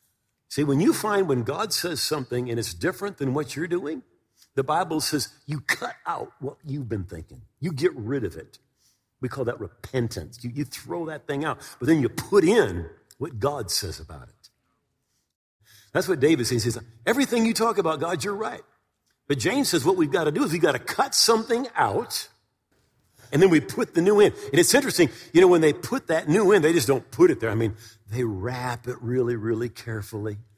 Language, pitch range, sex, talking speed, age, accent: English, 115-160 Hz, male, 215 wpm, 50-69, American